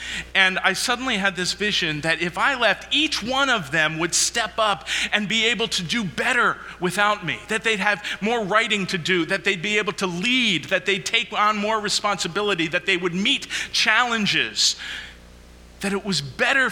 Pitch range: 120-200 Hz